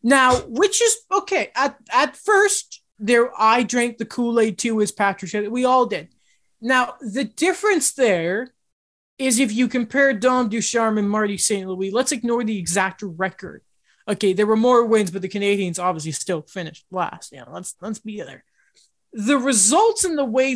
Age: 20-39